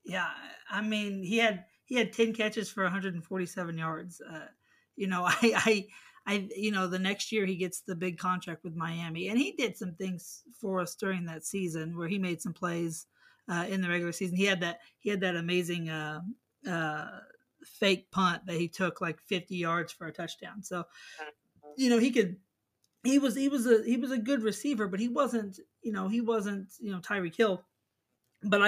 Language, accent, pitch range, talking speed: English, American, 175-210 Hz, 205 wpm